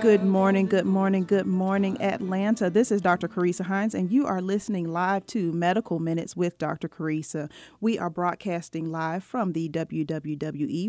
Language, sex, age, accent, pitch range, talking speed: English, female, 40-59, American, 160-195 Hz, 165 wpm